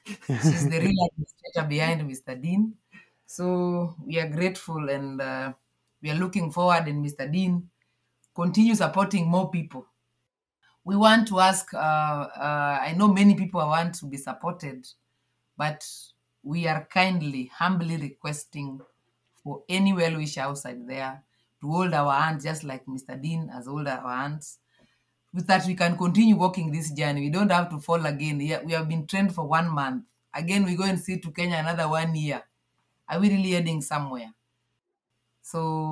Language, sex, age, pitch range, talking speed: English, female, 30-49, 140-180 Hz, 160 wpm